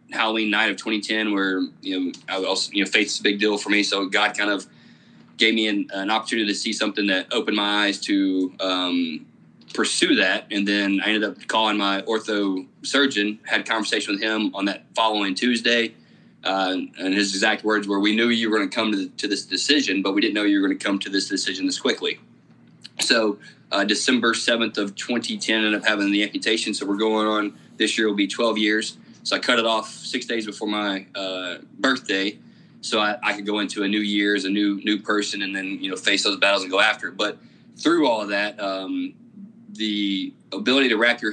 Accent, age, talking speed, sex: American, 20-39, 220 wpm, male